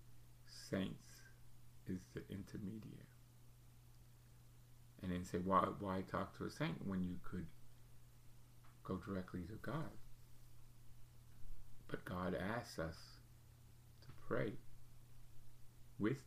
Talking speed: 100 wpm